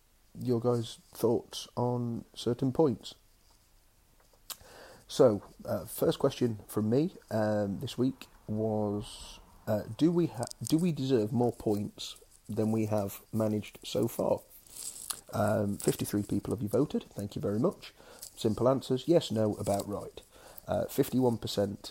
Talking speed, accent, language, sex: 130 wpm, British, English, male